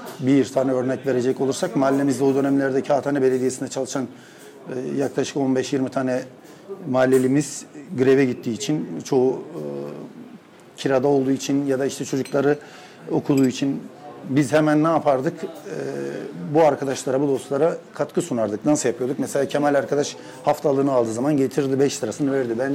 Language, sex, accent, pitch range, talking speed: Turkish, male, native, 130-150 Hz, 135 wpm